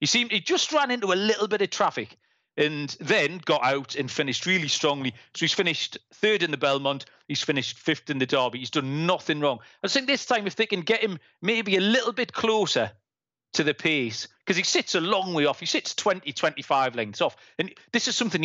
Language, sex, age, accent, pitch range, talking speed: English, male, 40-59, British, 140-205 Hz, 230 wpm